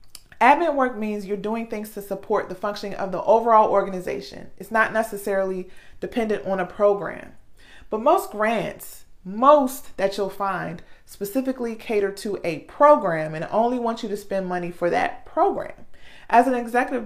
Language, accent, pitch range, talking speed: English, American, 190-255 Hz, 160 wpm